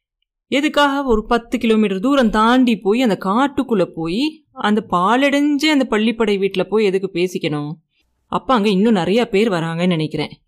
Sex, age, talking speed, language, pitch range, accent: female, 30-49, 145 wpm, Tamil, 170-235 Hz, native